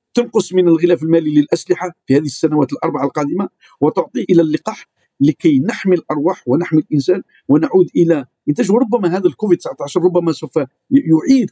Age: 50-69